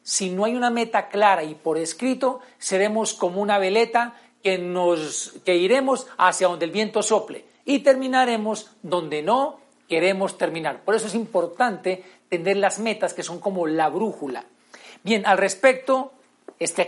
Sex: male